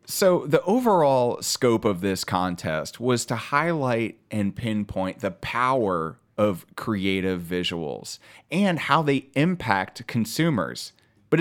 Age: 30-49